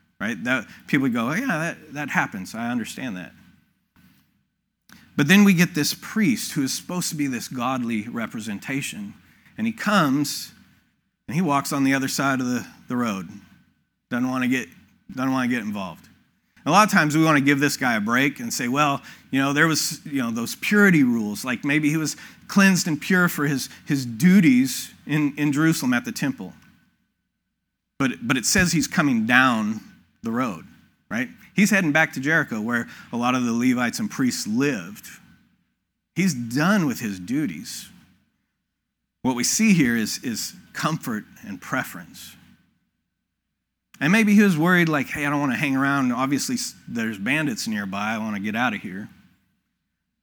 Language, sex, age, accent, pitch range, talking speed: English, male, 40-59, American, 135-210 Hz, 175 wpm